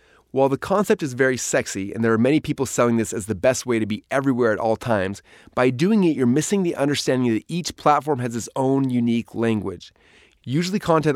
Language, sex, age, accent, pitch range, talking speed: English, male, 30-49, American, 120-160 Hz, 215 wpm